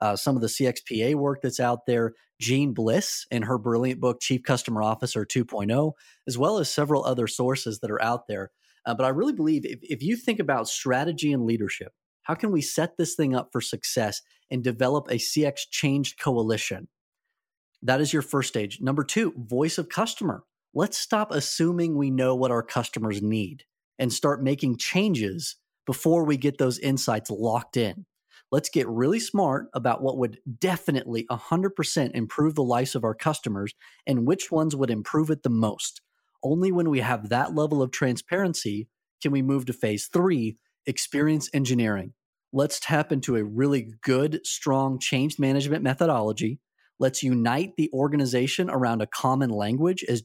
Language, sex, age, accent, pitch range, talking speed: English, male, 30-49, American, 120-150 Hz, 175 wpm